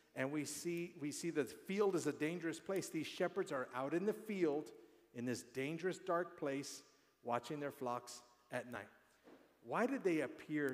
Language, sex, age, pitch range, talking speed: English, male, 50-69, 125-170 Hz, 185 wpm